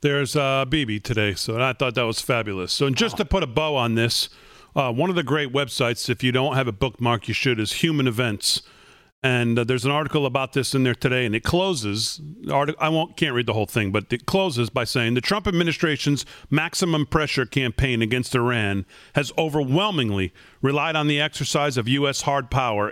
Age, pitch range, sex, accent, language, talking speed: 40-59, 125-155 Hz, male, American, English, 210 wpm